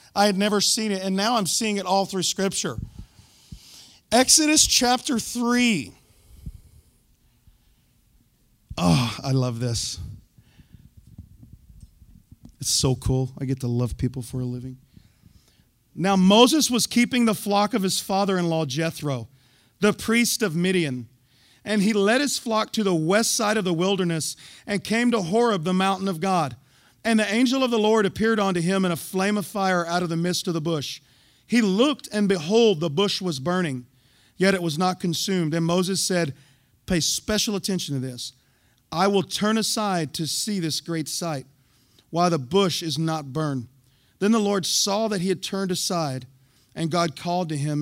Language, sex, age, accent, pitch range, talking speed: English, male, 40-59, American, 135-205 Hz, 170 wpm